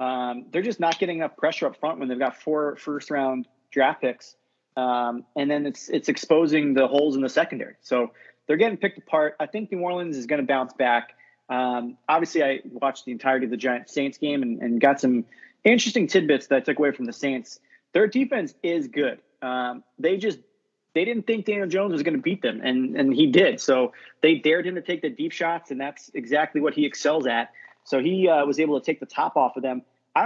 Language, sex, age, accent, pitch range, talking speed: English, male, 30-49, American, 135-180 Hz, 230 wpm